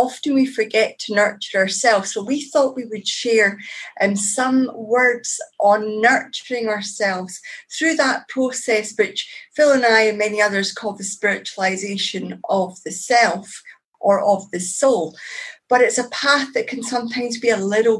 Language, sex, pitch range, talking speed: English, female, 205-255 Hz, 160 wpm